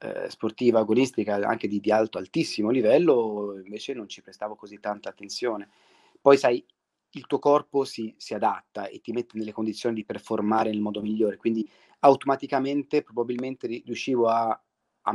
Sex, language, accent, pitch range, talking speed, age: male, Italian, native, 110-140 Hz, 155 wpm, 30-49